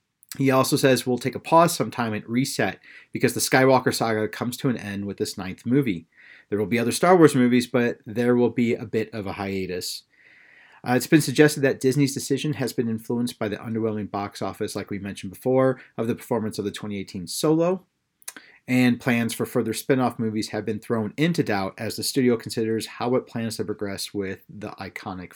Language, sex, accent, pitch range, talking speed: English, male, American, 105-125 Hz, 205 wpm